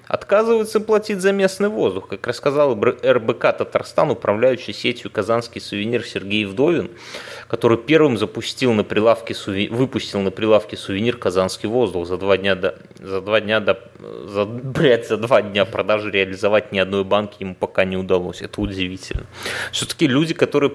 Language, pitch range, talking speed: Russian, 105-140 Hz, 125 wpm